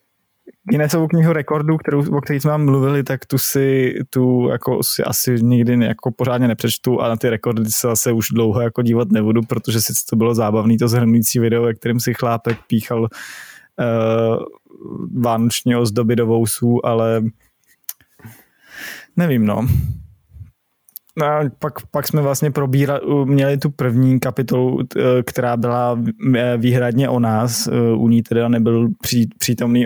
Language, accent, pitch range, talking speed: Czech, native, 115-130 Hz, 140 wpm